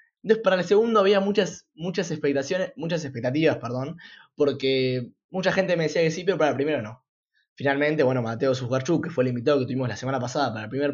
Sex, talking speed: male, 215 wpm